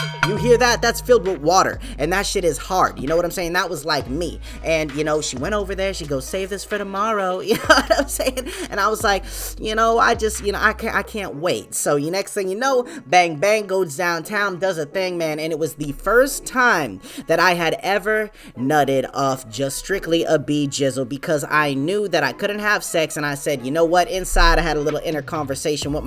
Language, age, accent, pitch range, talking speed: English, 20-39, American, 150-205 Hz, 240 wpm